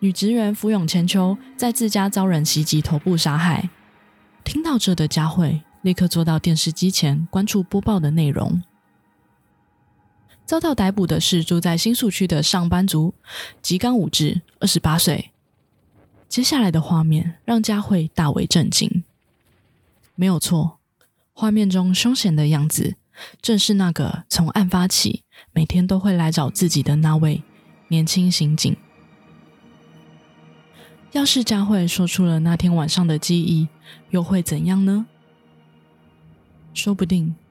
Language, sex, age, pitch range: Chinese, female, 20-39, 155-190 Hz